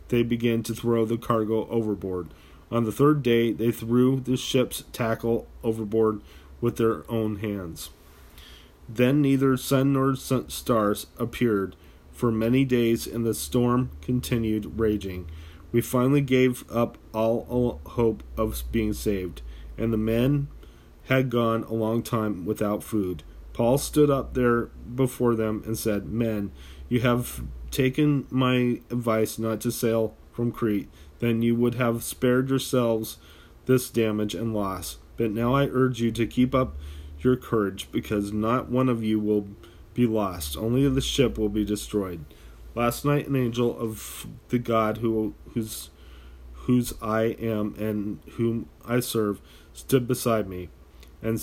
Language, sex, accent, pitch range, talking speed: English, male, American, 100-120 Hz, 150 wpm